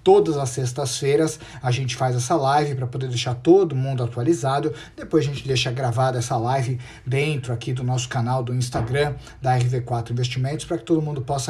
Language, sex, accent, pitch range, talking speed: Portuguese, male, Brazilian, 125-155 Hz, 190 wpm